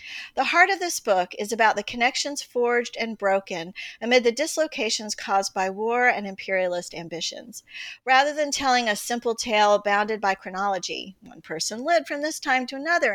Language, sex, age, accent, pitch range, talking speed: English, female, 40-59, American, 200-265 Hz, 175 wpm